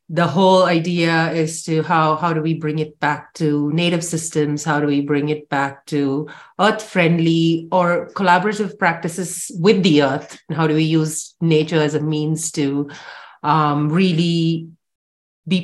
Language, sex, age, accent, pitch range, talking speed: English, female, 30-49, Indian, 155-190 Hz, 160 wpm